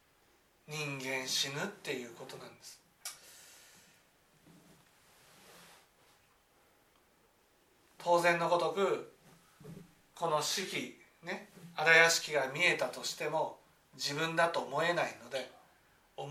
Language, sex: Japanese, male